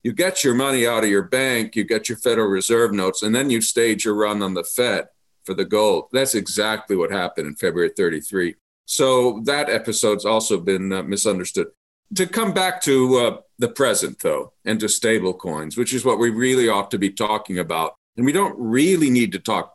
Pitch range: 110-155 Hz